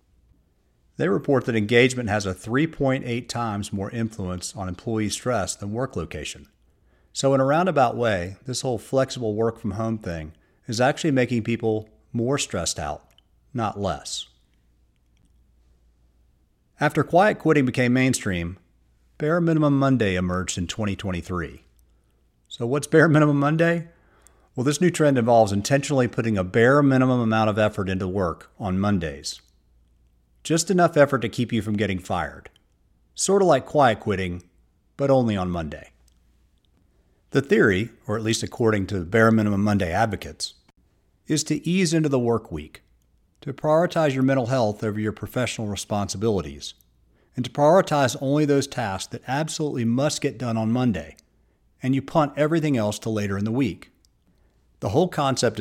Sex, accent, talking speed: male, American, 150 wpm